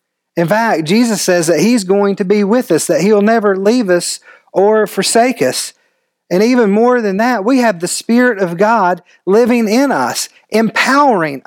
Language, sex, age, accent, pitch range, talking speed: English, male, 40-59, American, 160-215 Hz, 180 wpm